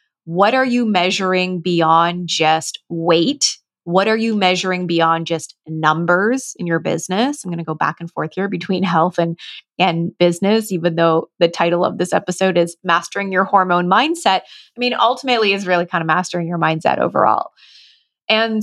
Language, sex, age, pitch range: English, female, 20-39, 175-220 Hz